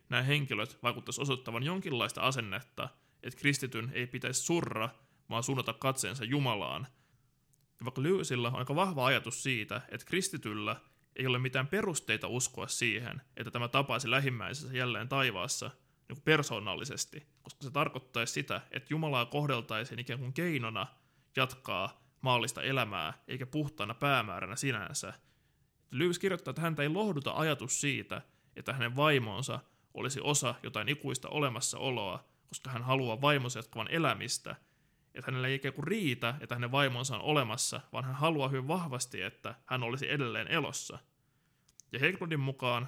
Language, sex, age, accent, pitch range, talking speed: Finnish, male, 20-39, native, 120-145 Hz, 140 wpm